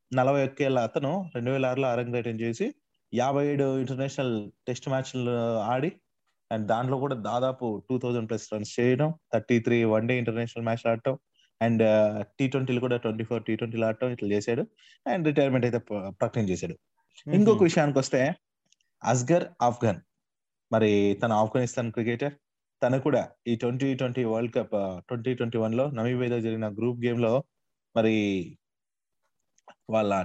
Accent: native